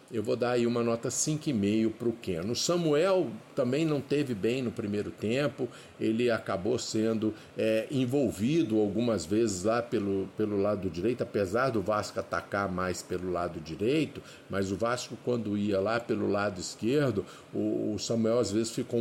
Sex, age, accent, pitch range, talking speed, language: male, 50-69, Brazilian, 100-125 Hz, 165 wpm, Portuguese